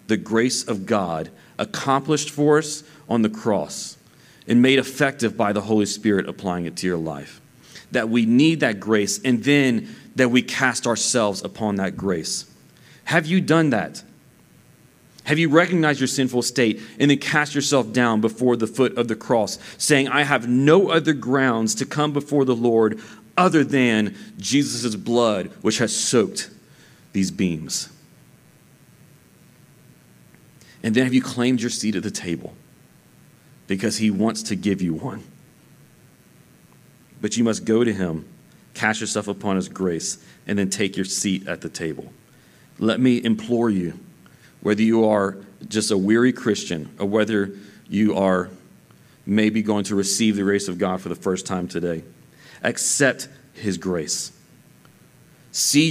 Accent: American